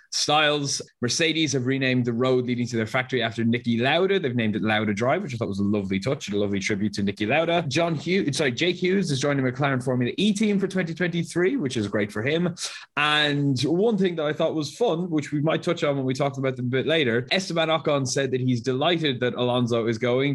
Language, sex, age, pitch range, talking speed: English, male, 20-39, 115-145 Hz, 240 wpm